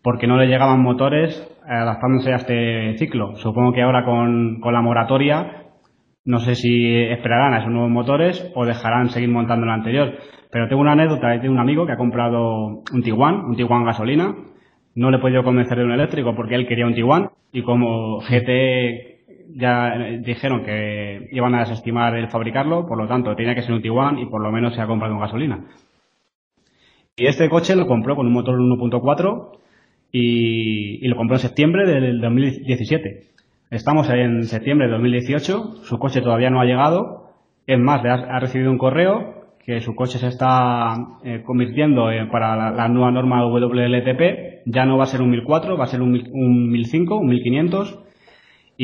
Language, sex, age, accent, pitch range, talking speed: Spanish, male, 20-39, Spanish, 120-135 Hz, 180 wpm